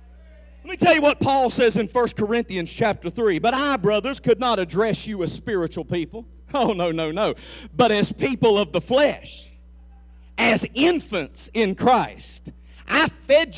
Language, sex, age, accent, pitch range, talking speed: English, male, 50-69, American, 170-285 Hz, 170 wpm